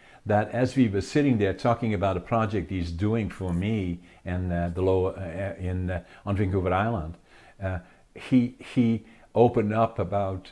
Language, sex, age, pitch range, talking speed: English, male, 50-69, 85-105 Hz, 170 wpm